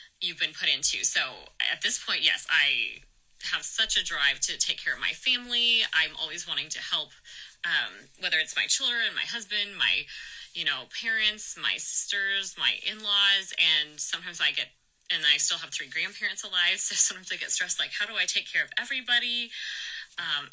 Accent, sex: American, female